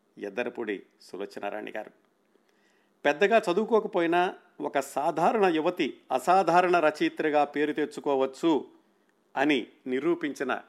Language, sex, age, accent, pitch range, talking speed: Telugu, male, 50-69, native, 135-185 Hz, 80 wpm